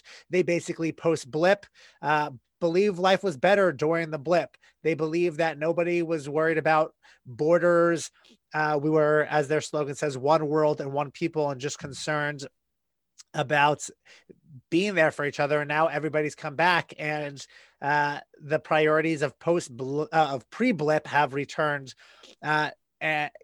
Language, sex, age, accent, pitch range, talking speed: English, male, 30-49, American, 150-175 Hz, 155 wpm